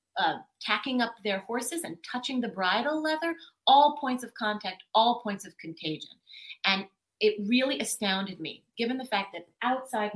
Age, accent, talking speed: 30-49, American, 160 wpm